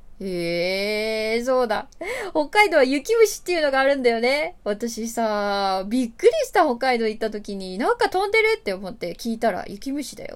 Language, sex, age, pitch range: Japanese, female, 20-39, 200-270 Hz